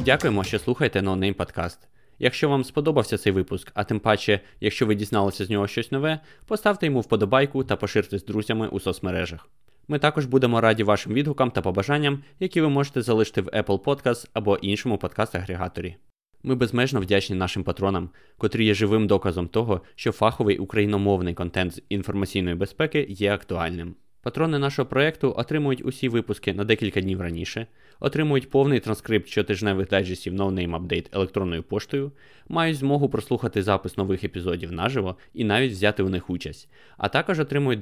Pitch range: 95-130 Hz